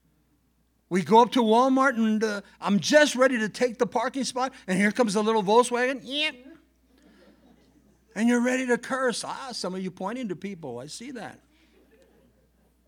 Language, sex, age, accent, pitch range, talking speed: English, male, 60-79, American, 155-245 Hz, 170 wpm